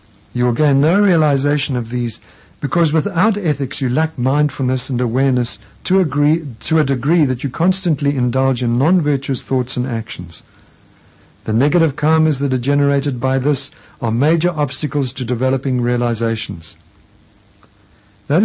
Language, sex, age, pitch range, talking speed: English, male, 60-79, 115-155 Hz, 145 wpm